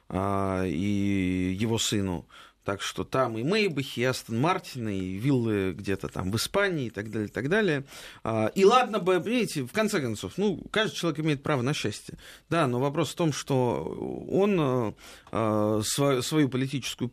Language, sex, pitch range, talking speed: Russian, male, 110-165 Hz, 160 wpm